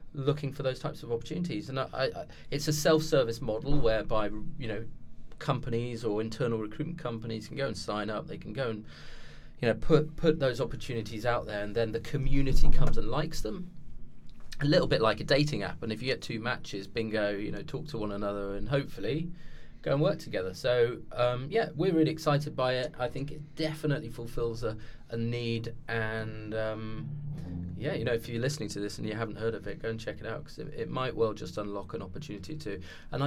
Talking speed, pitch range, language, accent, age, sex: 215 wpm, 110-150 Hz, English, British, 20-39, male